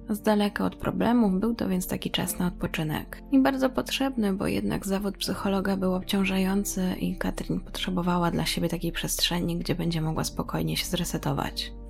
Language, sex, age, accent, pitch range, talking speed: Polish, female, 20-39, native, 185-220 Hz, 165 wpm